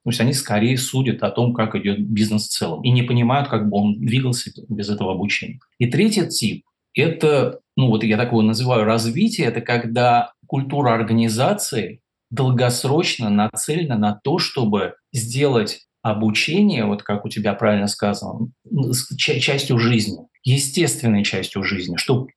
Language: Russian